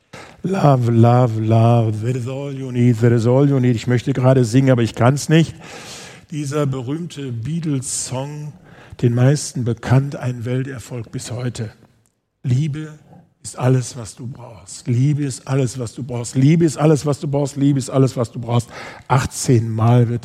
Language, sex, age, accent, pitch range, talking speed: German, male, 50-69, German, 115-140 Hz, 175 wpm